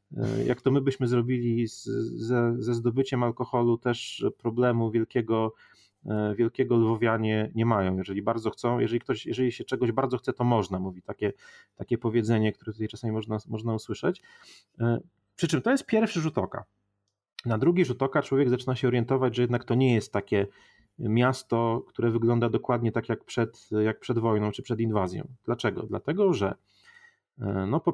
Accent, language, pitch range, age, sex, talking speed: native, Polish, 110-125 Hz, 30-49, male, 155 wpm